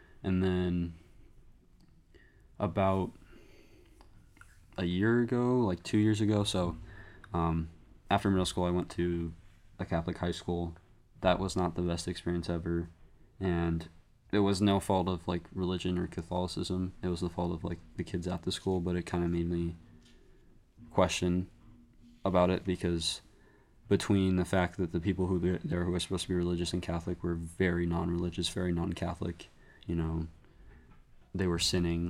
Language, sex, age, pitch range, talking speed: English, male, 20-39, 85-95 Hz, 165 wpm